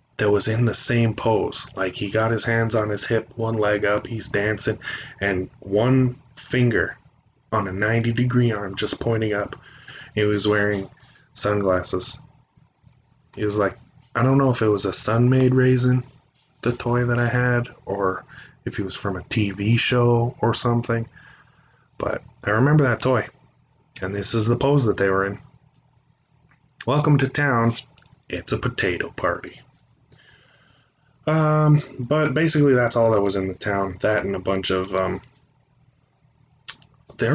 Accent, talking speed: American, 160 wpm